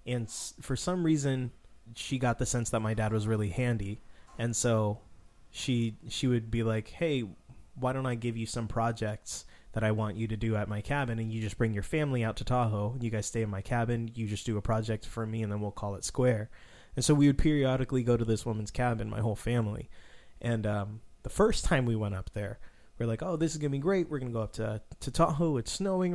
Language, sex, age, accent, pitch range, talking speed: English, male, 20-39, American, 110-140 Hz, 245 wpm